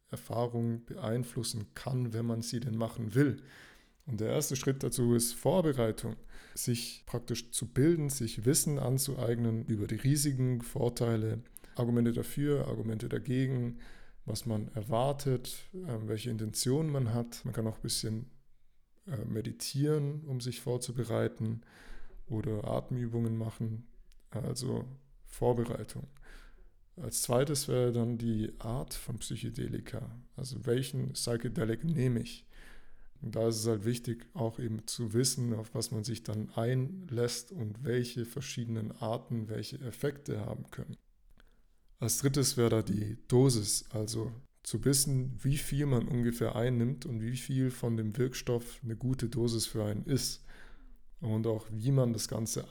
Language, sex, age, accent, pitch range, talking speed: German, male, 20-39, German, 115-130 Hz, 135 wpm